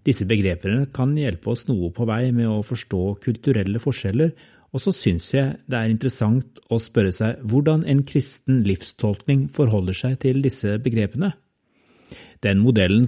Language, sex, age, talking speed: English, male, 40-59, 155 wpm